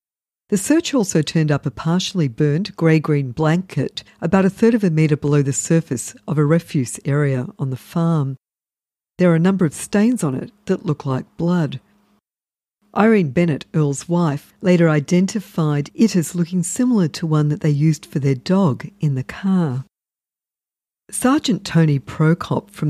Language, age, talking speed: English, 50-69, 165 wpm